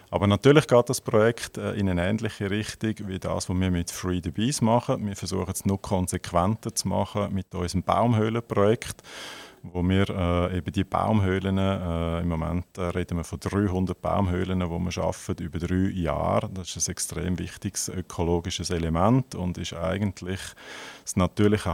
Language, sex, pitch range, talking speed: German, male, 90-105 Hz, 165 wpm